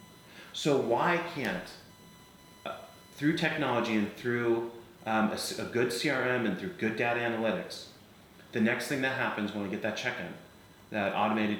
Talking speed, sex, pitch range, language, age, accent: 155 wpm, male, 105-130 Hz, English, 30-49, American